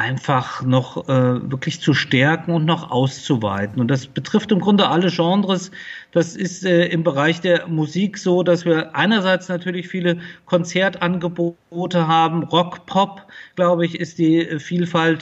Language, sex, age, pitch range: German, male, 50-69, 155-175 Hz